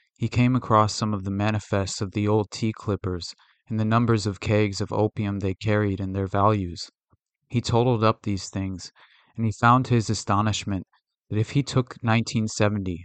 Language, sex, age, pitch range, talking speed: English, male, 30-49, 100-110 Hz, 185 wpm